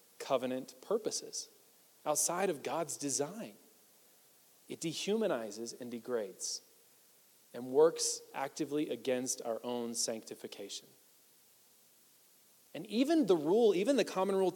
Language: English